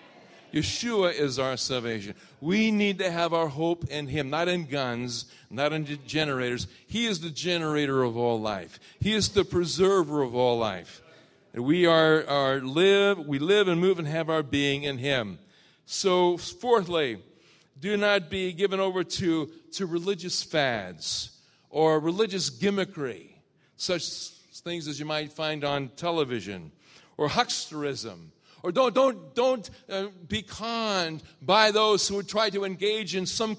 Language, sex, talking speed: English, male, 155 wpm